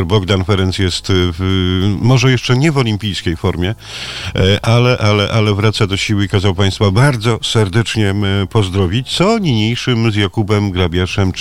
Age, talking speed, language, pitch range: 50-69, 130 wpm, Polish, 100-130 Hz